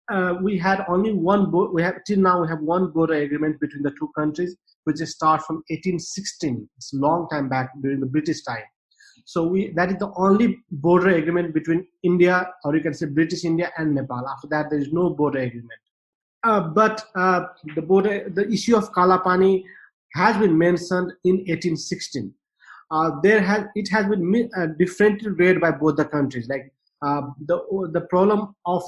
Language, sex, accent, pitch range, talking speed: English, male, Indian, 150-190 Hz, 190 wpm